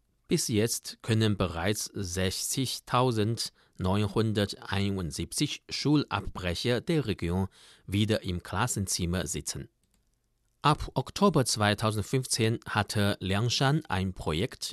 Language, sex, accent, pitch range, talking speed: German, male, German, 95-125 Hz, 75 wpm